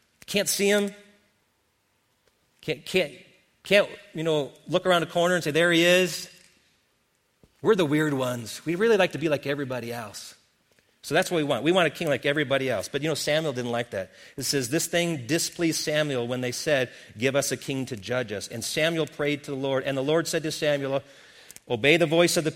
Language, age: English, 40-59